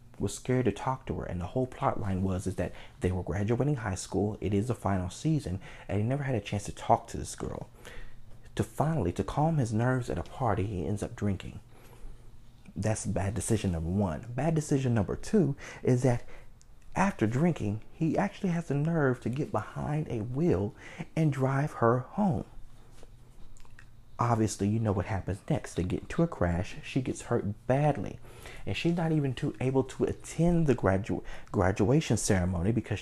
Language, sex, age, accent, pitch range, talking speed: English, male, 30-49, American, 105-130 Hz, 185 wpm